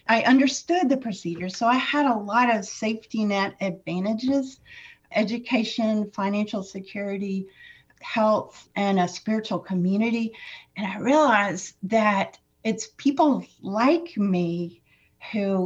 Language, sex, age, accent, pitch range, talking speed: English, female, 50-69, American, 190-240 Hz, 115 wpm